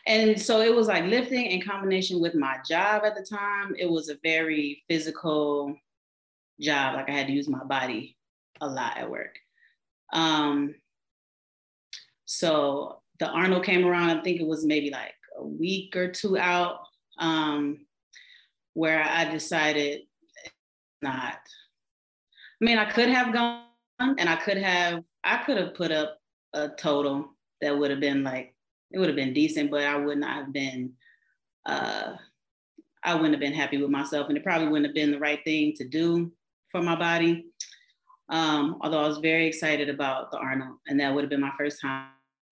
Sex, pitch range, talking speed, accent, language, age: female, 145-175 Hz, 175 wpm, American, English, 30-49